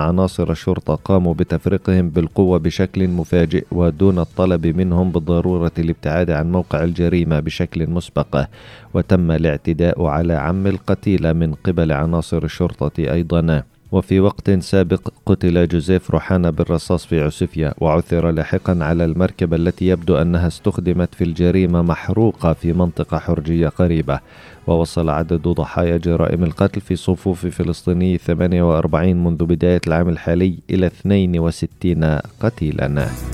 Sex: male